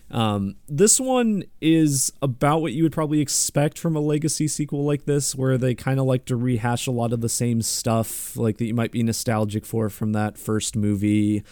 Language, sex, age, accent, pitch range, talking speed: English, male, 30-49, American, 110-145 Hz, 210 wpm